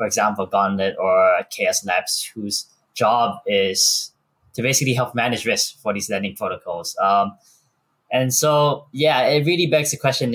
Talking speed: 155 wpm